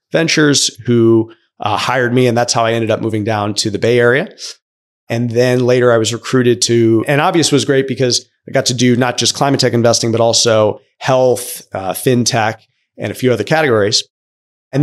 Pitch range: 115-135 Hz